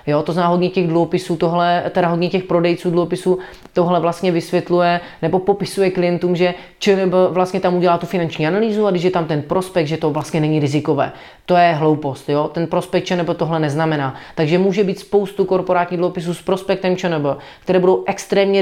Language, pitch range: Czech, 155-185 Hz